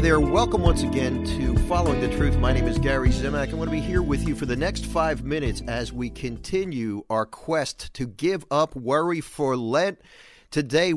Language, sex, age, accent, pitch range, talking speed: English, male, 50-69, American, 115-150 Hz, 200 wpm